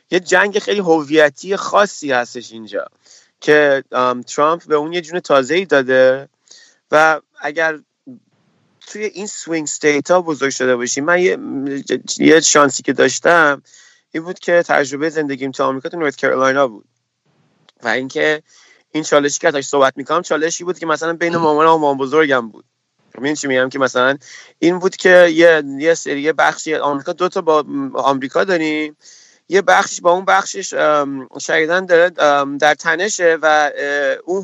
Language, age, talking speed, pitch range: Persian, 30-49, 150 wpm, 135-165 Hz